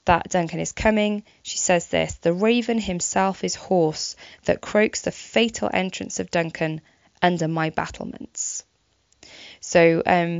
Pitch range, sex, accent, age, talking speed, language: 160-195 Hz, female, British, 20-39, 140 wpm, English